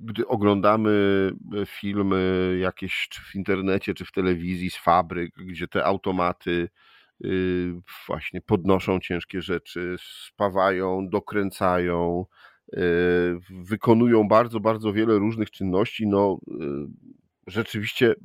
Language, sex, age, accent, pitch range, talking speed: Polish, male, 40-59, native, 90-105 Hz, 90 wpm